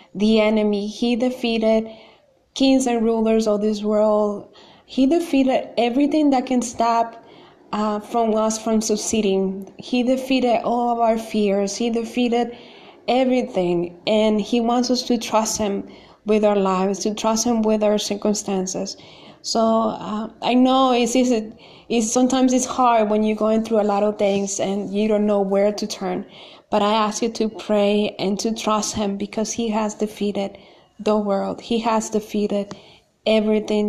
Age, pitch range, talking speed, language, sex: 20-39, 205-235 Hz, 160 wpm, English, female